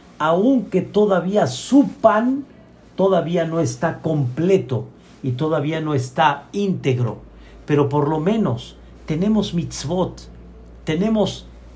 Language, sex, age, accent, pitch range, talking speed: Spanish, male, 50-69, Mexican, 135-195 Hz, 100 wpm